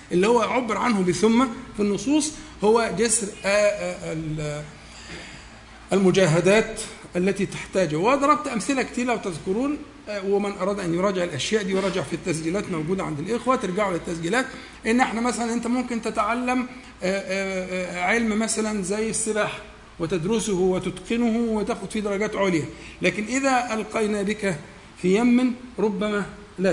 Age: 50-69